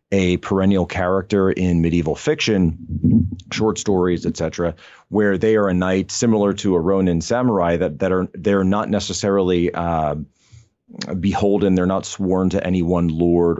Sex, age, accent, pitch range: male, 30-49, American, 85-100 Hz